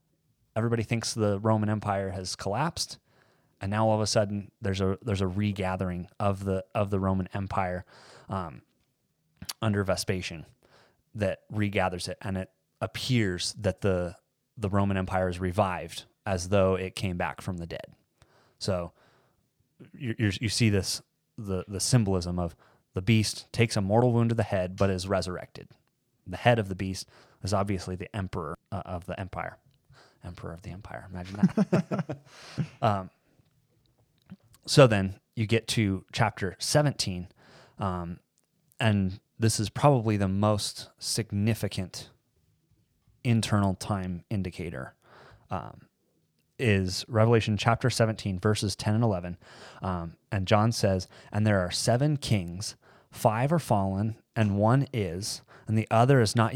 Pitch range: 95-115 Hz